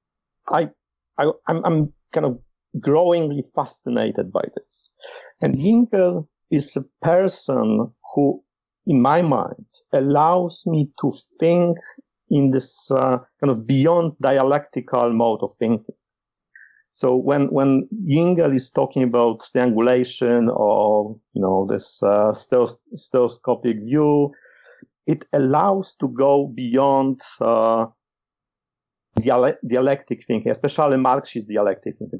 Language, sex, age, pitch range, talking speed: English, male, 50-69, 120-155 Hz, 110 wpm